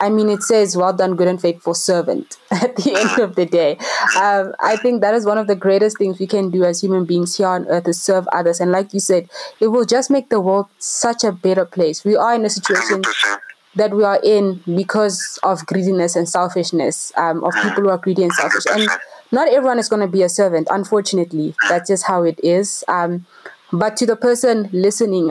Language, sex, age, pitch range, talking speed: English, female, 20-39, 180-215 Hz, 225 wpm